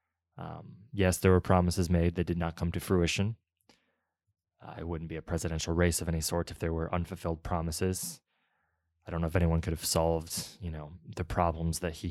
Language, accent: English, American